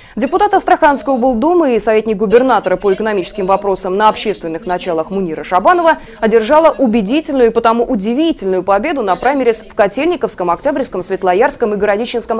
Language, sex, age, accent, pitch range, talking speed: Russian, female, 20-39, native, 195-270 Hz, 135 wpm